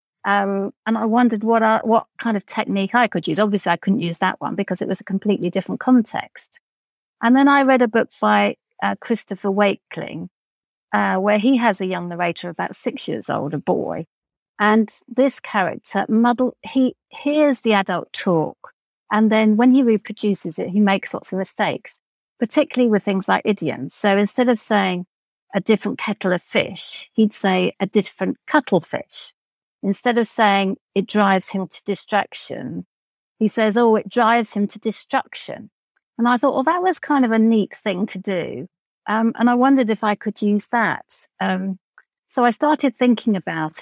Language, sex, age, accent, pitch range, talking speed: English, female, 50-69, British, 195-245 Hz, 180 wpm